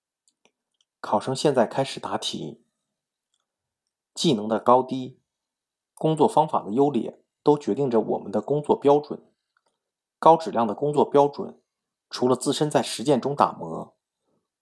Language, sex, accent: Chinese, male, native